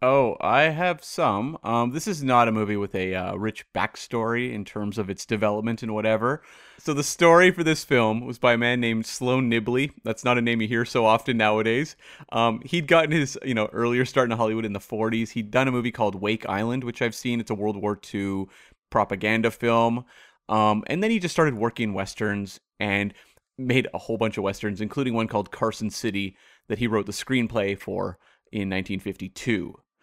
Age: 30-49